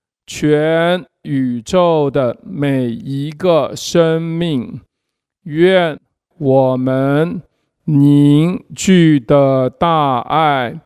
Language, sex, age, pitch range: Chinese, male, 50-69, 135-165 Hz